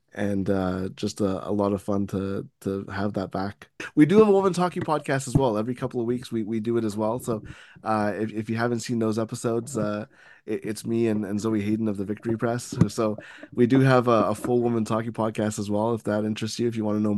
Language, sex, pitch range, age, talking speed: English, male, 100-115 Hz, 20-39, 260 wpm